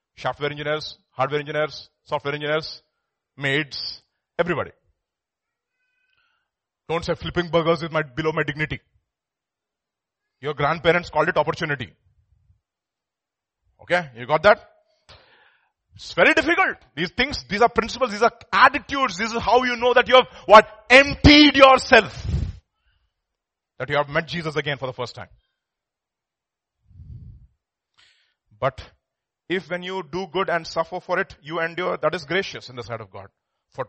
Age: 30-49